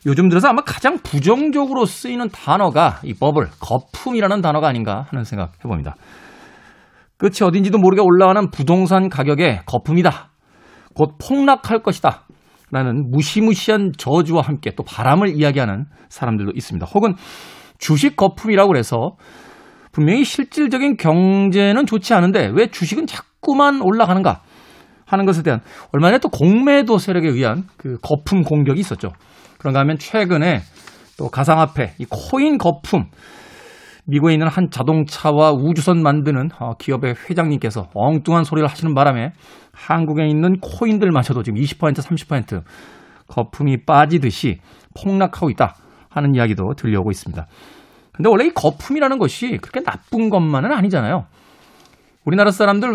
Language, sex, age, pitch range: Korean, male, 40-59, 140-200 Hz